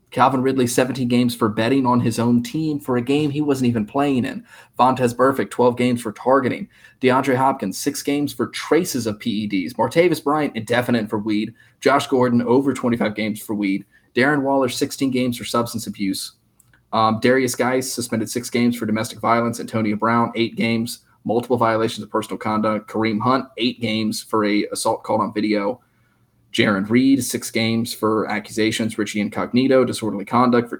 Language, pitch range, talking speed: English, 110-130 Hz, 175 wpm